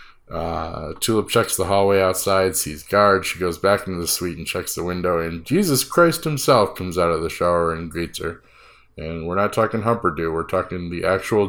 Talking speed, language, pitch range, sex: 205 wpm, English, 85-105 Hz, male